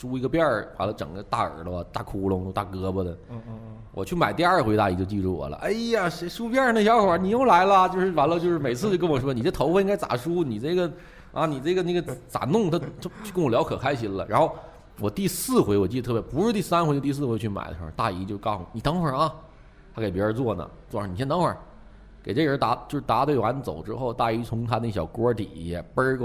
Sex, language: male, Chinese